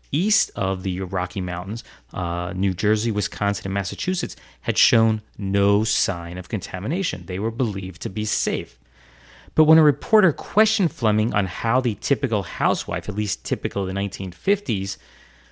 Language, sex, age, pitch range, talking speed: English, male, 30-49, 95-125 Hz, 155 wpm